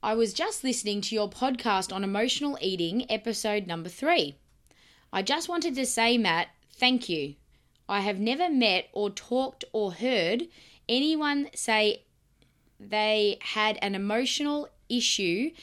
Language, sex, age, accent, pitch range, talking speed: English, female, 20-39, Australian, 200-250 Hz, 140 wpm